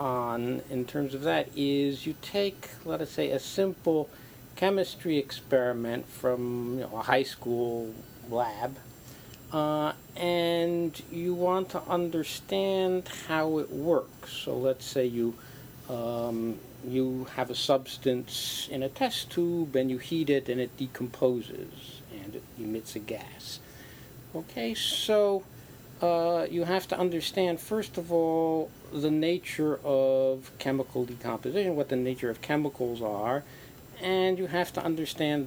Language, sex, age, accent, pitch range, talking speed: English, male, 50-69, American, 125-160 Hz, 130 wpm